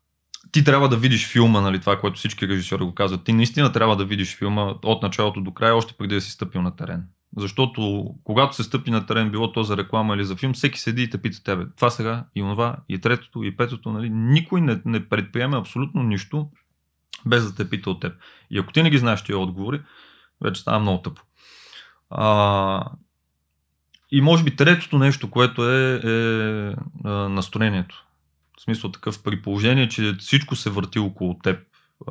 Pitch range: 100-125 Hz